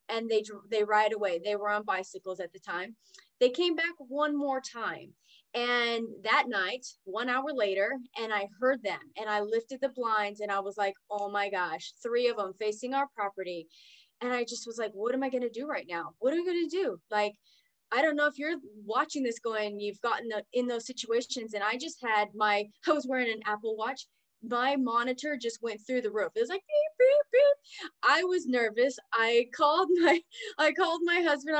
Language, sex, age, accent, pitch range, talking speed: English, female, 20-39, American, 220-300 Hz, 210 wpm